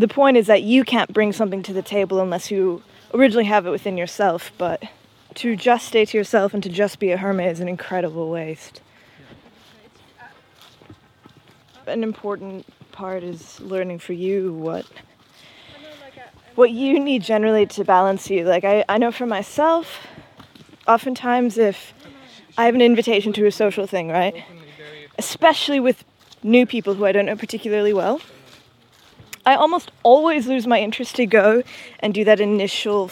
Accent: American